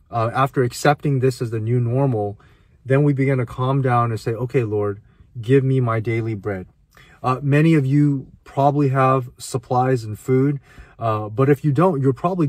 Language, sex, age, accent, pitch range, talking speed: English, male, 30-49, American, 115-135 Hz, 185 wpm